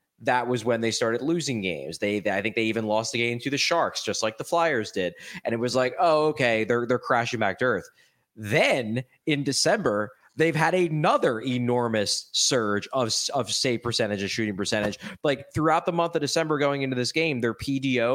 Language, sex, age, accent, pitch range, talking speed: English, male, 20-39, American, 110-155 Hz, 210 wpm